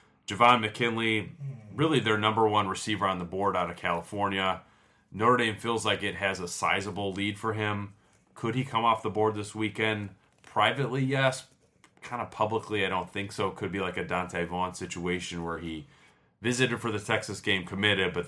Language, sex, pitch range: English, male, 85-105 Hz